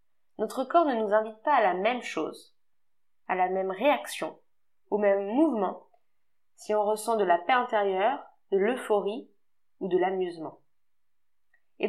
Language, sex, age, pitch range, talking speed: French, female, 20-39, 210-300 Hz, 150 wpm